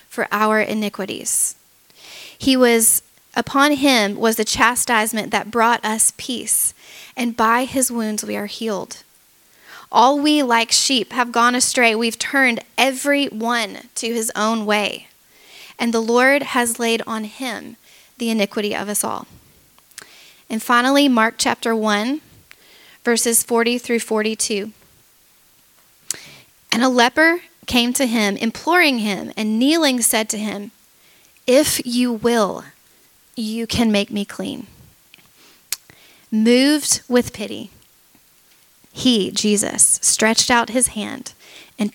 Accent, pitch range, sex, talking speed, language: American, 215-250 Hz, female, 125 wpm, English